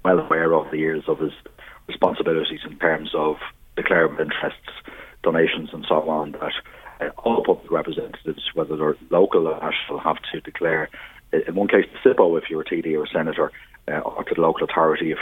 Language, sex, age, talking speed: English, male, 30-49, 195 wpm